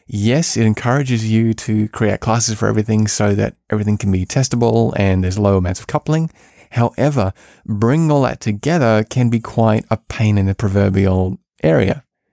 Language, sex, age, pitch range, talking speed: English, male, 20-39, 105-125 Hz, 170 wpm